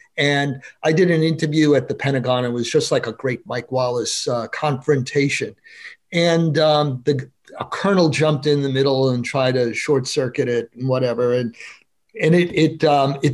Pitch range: 135-175 Hz